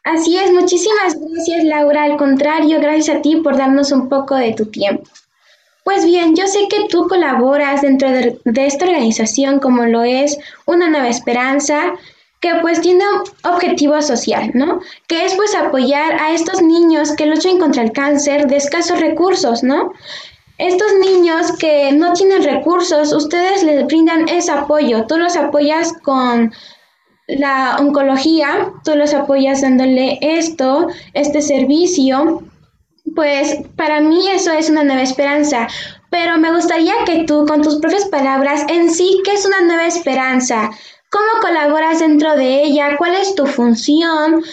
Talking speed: 155 wpm